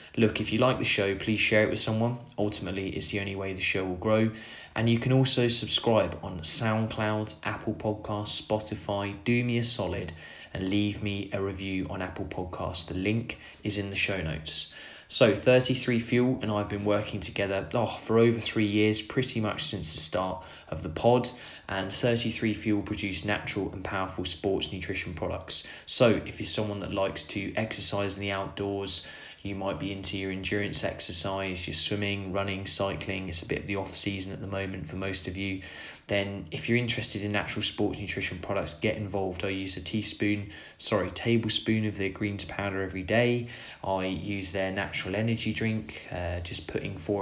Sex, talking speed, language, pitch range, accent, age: male, 185 wpm, English, 95-110 Hz, British, 20-39